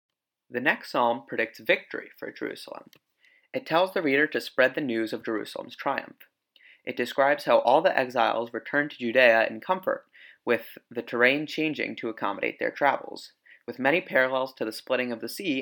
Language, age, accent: English, 30-49, American